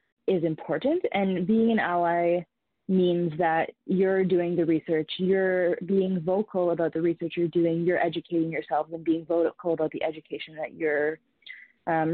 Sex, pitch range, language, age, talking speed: female, 165-195 Hz, English, 20-39, 160 wpm